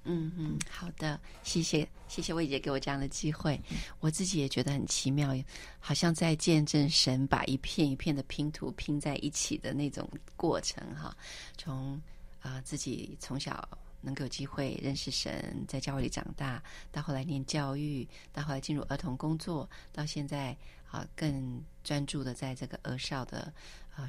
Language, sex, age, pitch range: Chinese, female, 30-49, 135-155 Hz